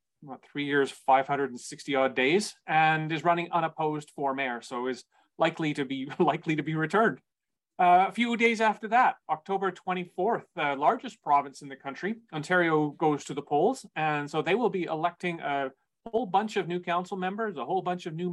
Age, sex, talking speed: 30-49, male, 185 wpm